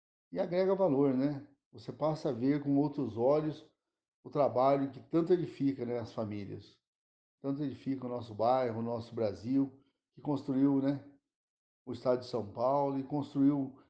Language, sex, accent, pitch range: Portuguese, male, Brazilian, 120-150 Hz